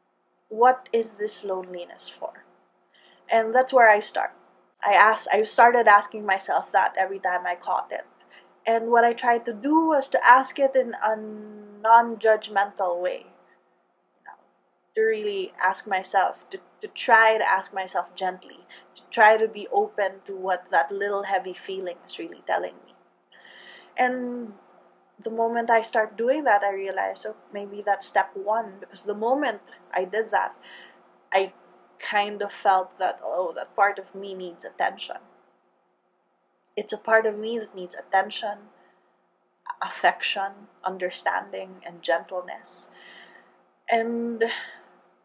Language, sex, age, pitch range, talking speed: English, female, 20-39, 195-235 Hz, 140 wpm